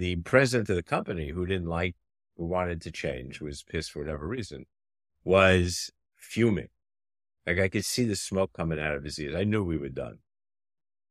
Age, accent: 50-69, American